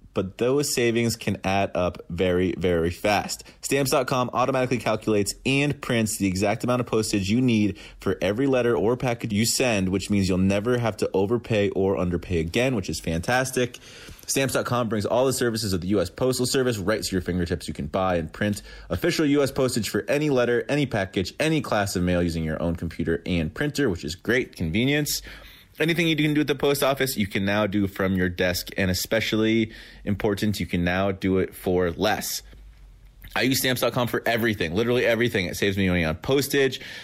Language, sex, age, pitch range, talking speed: English, male, 30-49, 95-125 Hz, 195 wpm